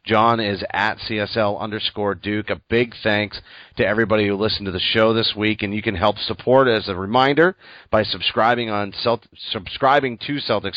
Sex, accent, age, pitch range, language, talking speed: male, American, 30-49, 95-115 Hz, English, 185 wpm